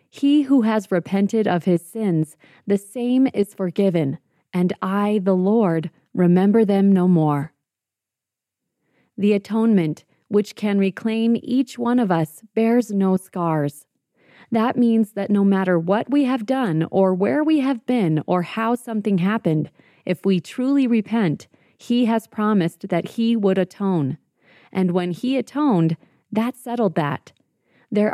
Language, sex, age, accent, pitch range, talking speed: English, female, 30-49, American, 170-225 Hz, 145 wpm